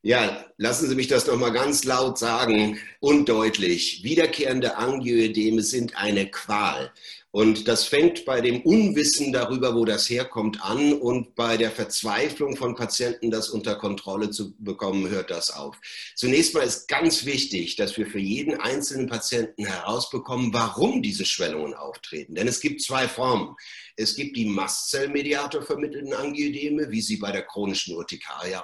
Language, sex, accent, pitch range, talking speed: German, male, German, 110-145 Hz, 155 wpm